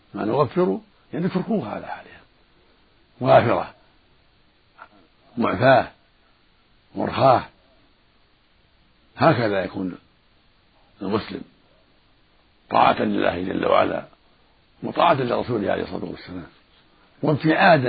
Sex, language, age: male, Arabic, 60-79